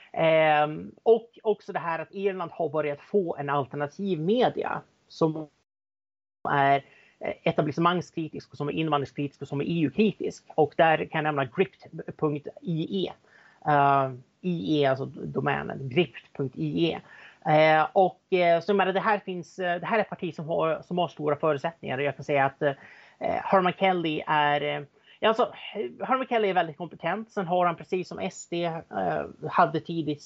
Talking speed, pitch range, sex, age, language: 160 wpm, 145-180 Hz, male, 30-49, Swedish